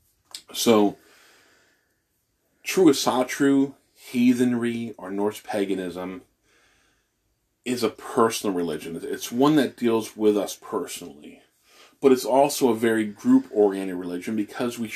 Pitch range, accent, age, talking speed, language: 105-130 Hz, American, 30-49, 110 wpm, English